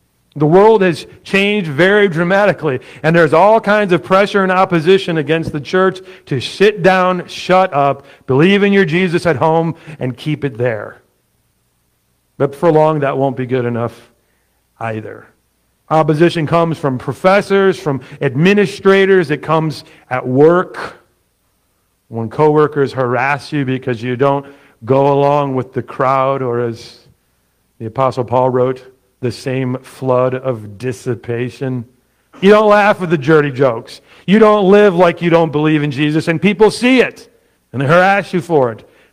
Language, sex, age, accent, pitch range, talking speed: English, male, 50-69, American, 125-175 Hz, 155 wpm